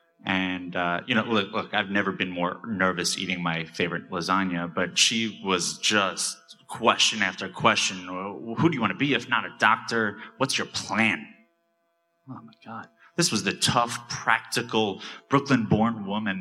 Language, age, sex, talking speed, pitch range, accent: English, 20-39, male, 165 wpm, 95-120 Hz, American